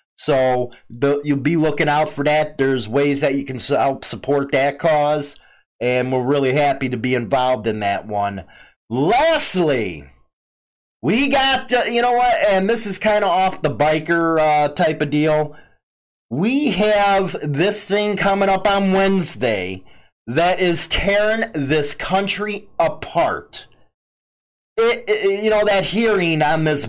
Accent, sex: American, male